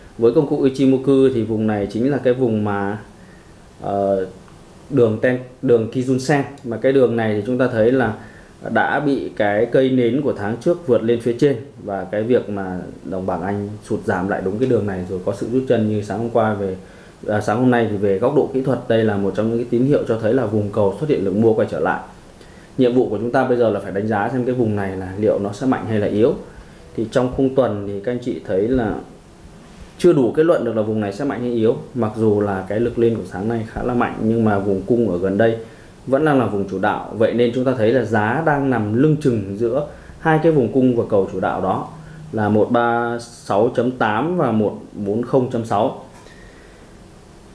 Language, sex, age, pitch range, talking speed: Vietnamese, male, 20-39, 105-130 Hz, 235 wpm